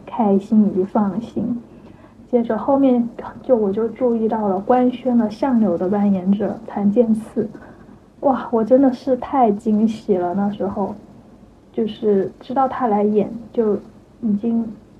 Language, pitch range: Chinese, 200-240 Hz